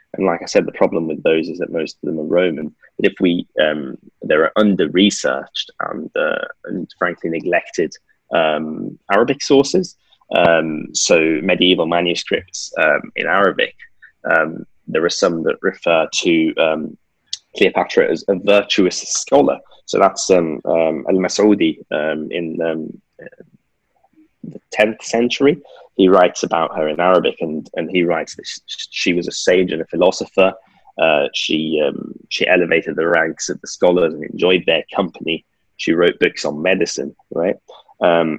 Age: 20-39